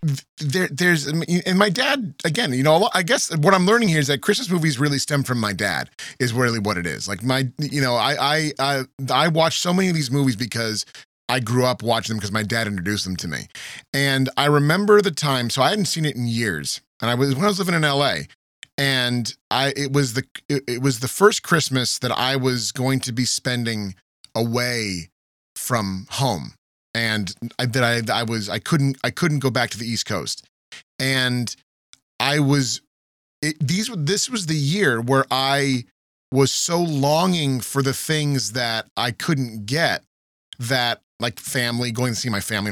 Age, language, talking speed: 30-49, English, 200 wpm